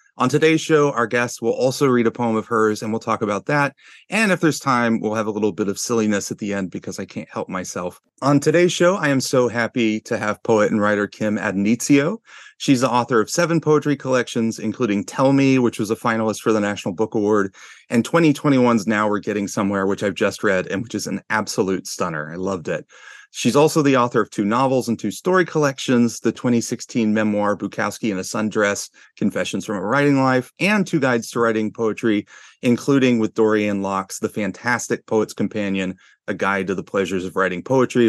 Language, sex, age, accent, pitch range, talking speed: English, male, 30-49, American, 105-130 Hz, 210 wpm